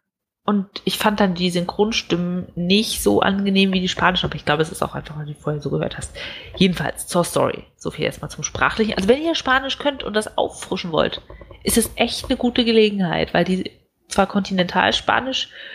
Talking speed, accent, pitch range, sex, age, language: 200 wpm, German, 160-205 Hz, female, 30-49, German